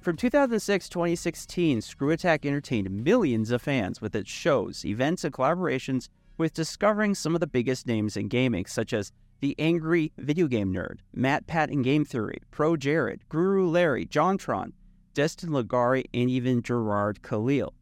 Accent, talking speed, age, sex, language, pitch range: American, 160 wpm, 30-49, male, English, 115-170 Hz